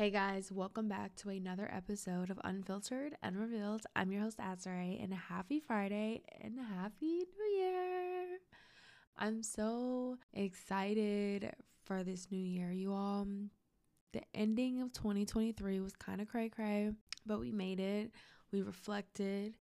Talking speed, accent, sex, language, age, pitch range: 140 wpm, American, female, English, 20-39, 185-215 Hz